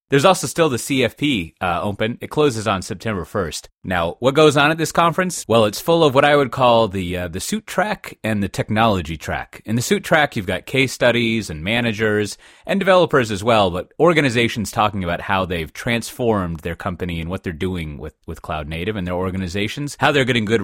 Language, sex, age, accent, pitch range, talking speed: English, male, 30-49, American, 85-115 Hz, 215 wpm